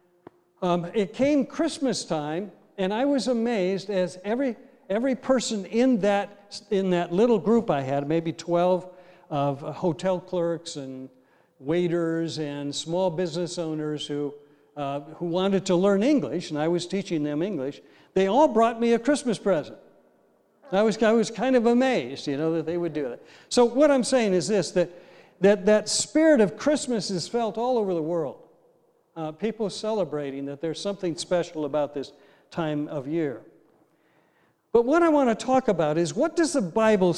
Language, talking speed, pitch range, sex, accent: English, 175 wpm, 165-230 Hz, male, American